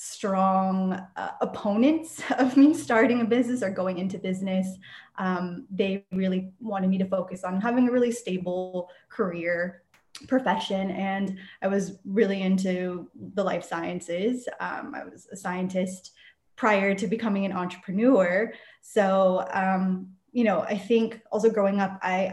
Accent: American